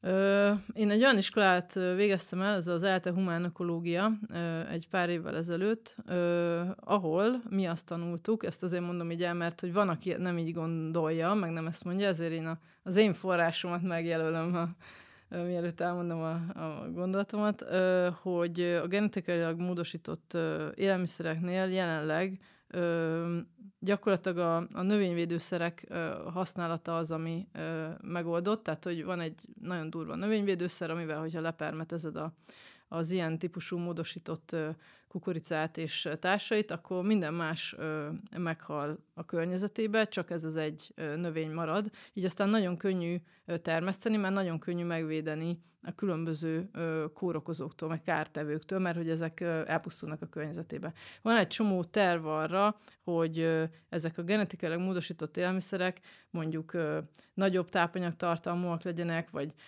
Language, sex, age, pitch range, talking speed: Hungarian, female, 30-49, 165-190 Hz, 140 wpm